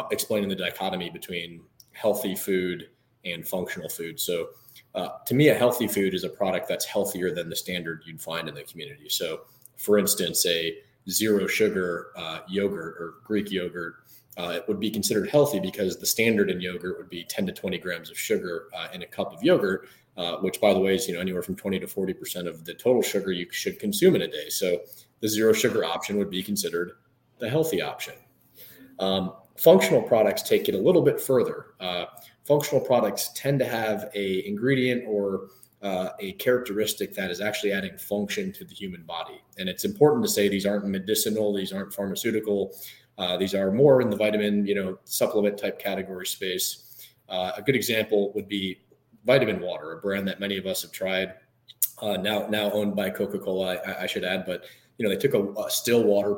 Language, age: English, 30-49